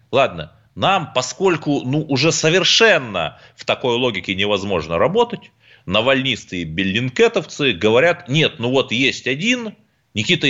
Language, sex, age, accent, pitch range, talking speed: Russian, male, 30-49, native, 110-165 Hz, 115 wpm